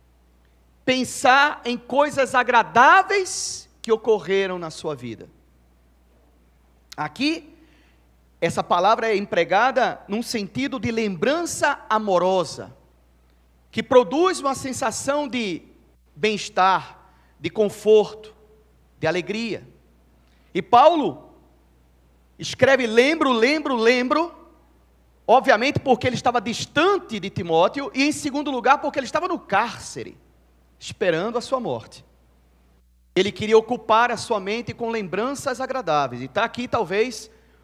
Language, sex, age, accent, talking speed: Portuguese, male, 40-59, Brazilian, 110 wpm